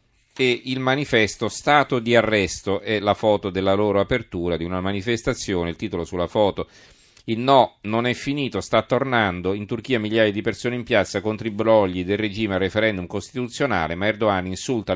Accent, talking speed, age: native, 175 wpm, 40-59